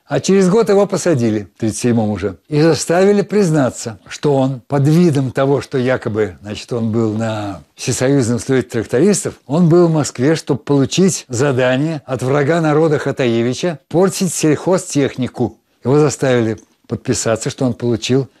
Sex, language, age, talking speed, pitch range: male, Russian, 60-79, 145 wpm, 120-155 Hz